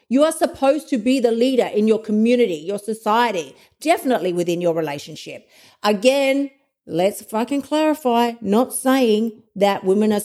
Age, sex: 50-69, female